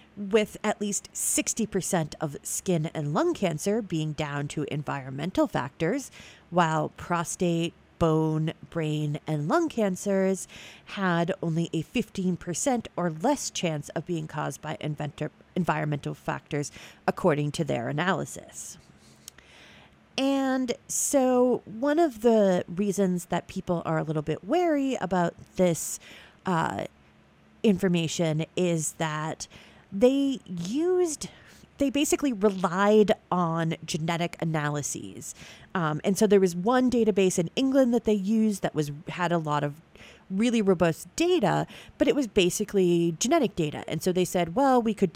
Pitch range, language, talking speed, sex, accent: 160-210 Hz, English, 130 wpm, female, American